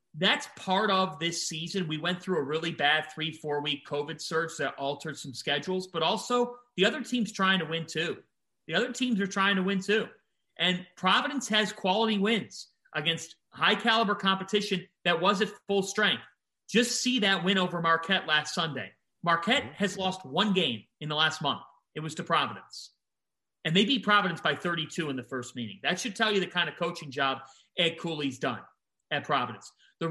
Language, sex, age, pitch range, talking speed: English, male, 40-59, 160-210 Hz, 190 wpm